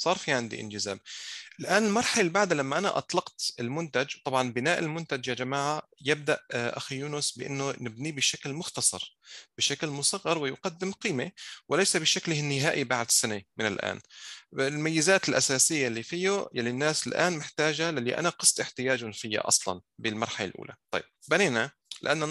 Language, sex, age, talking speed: Arabic, male, 30-49, 145 wpm